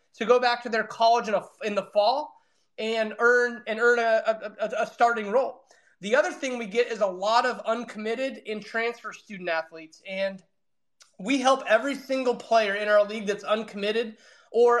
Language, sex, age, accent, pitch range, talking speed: English, male, 20-39, American, 205-240 Hz, 180 wpm